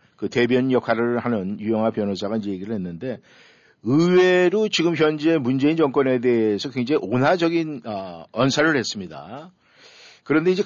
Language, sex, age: Korean, male, 50-69